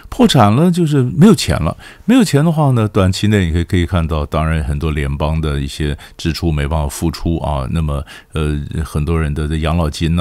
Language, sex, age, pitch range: Chinese, male, 50-69, 75-100 Hz